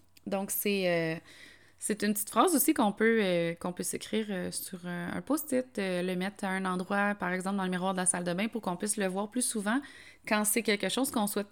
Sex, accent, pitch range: female, Canadian, 195-245 Hz